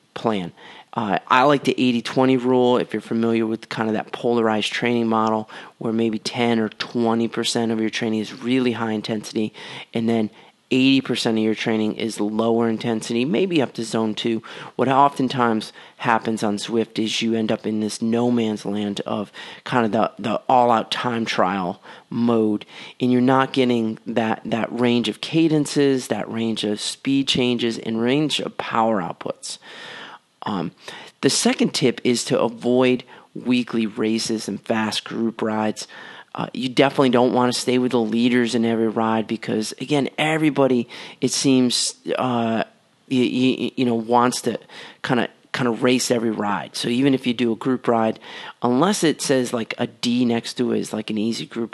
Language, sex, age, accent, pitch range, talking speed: English, male, 30-49, American, 110-130 Hz, 180 wpm